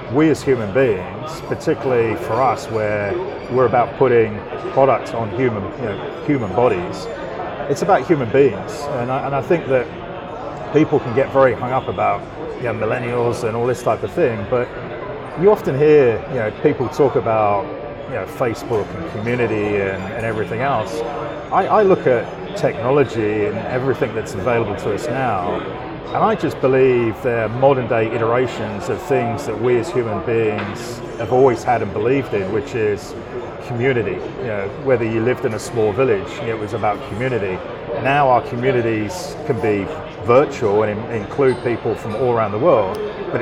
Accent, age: British, 30-49